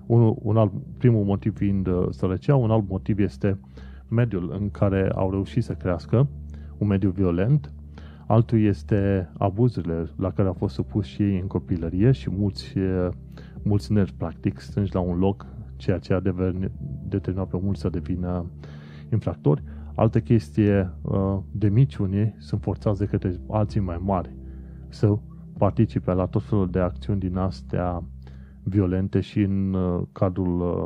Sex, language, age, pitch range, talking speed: male, Romanian, 30-49, 90-105 Hz, 155 wpm